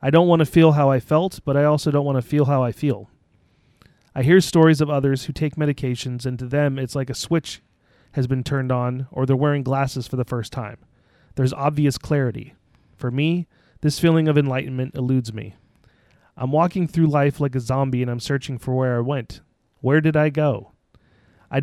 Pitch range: 130-150 Hz